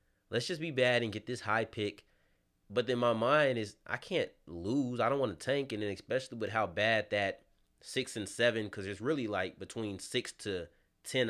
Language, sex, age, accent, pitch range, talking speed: English, male, 20-39, American, 95-120 Hz, 210 wpm